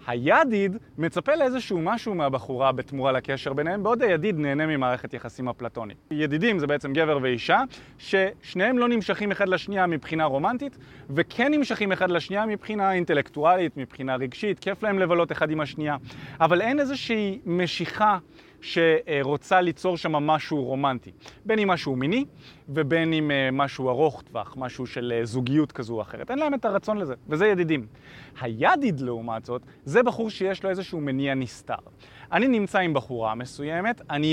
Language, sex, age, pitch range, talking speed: Hebrew, male, 30-49, 140-215 Hz, 150 wpm